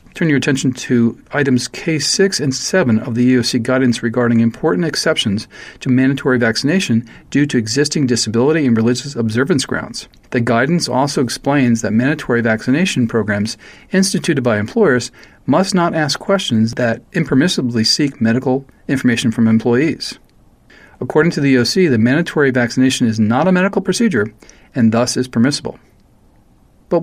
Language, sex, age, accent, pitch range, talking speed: English, male, 40-59, American, 115-160 Hz, 145 wpm